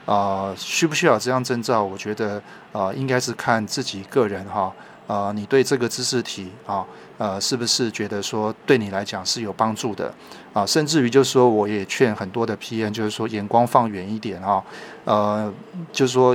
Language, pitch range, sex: Chinese, 105-125 Hz, male